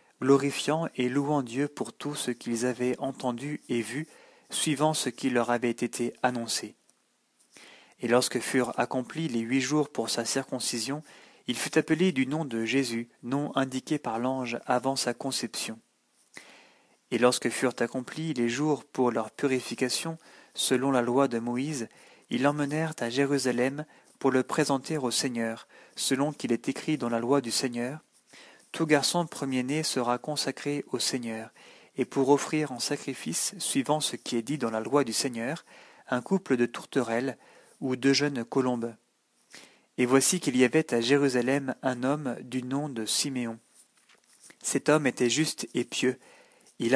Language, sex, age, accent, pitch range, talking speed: French, male, 40-59, French, 120-145 Hz, 160 wpm